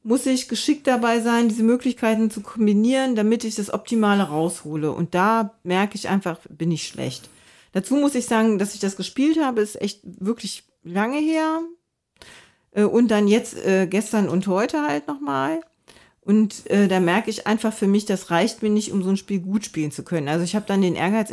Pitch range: 190-250 Hz